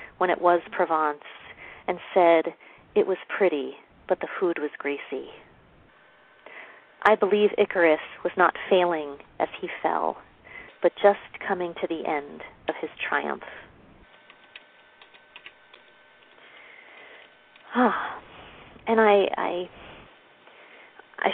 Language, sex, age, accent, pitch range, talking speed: English, female, 40-59, American, 165-205 Hz, 100 wpm